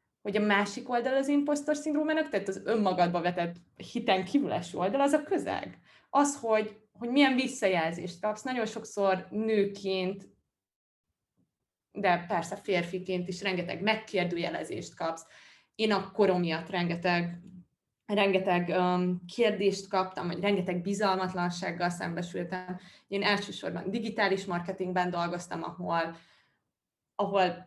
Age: 20-39